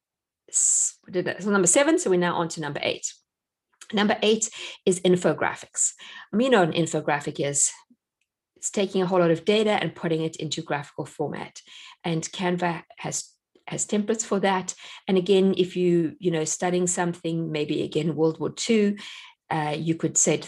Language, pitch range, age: English, 165-220 Hz, 50-69